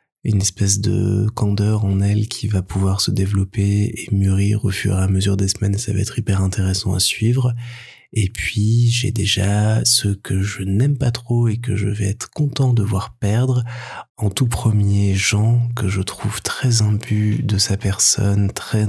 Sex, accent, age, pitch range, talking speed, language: male, French, 20-39, 100-115 Hz, 185 wpm, French